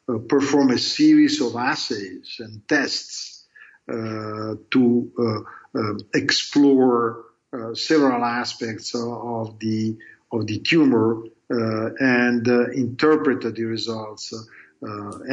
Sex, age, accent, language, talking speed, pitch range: male, 50-69, Italian, English, 100 wpm, 115-140 Hz